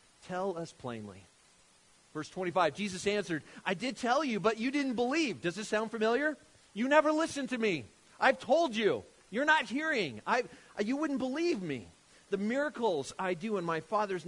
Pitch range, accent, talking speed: 165-230 Hz, American, 175 wpm